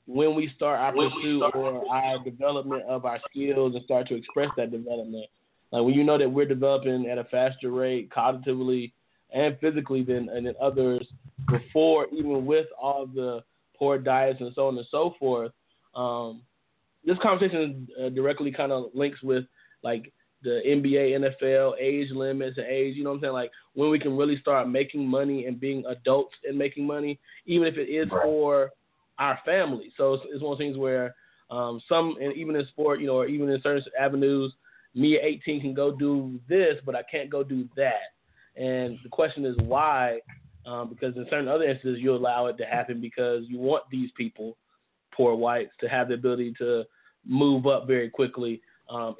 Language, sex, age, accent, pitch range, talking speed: English, male, 20-39, American, 125-145 Hz, 190 wpm